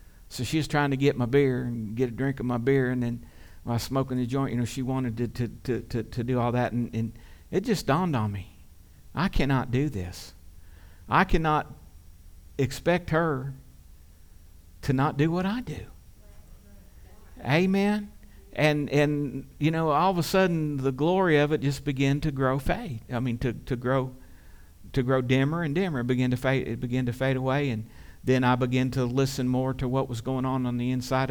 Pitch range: 105-150 Hz